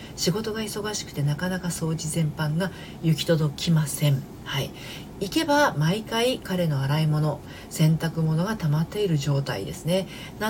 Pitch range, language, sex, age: 145-200 Hz, Japanese, female, 40-59